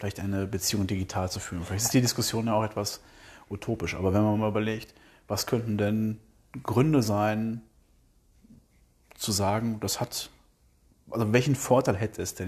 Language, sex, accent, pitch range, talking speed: German, male, German, 90-115 Hz, 165 wpm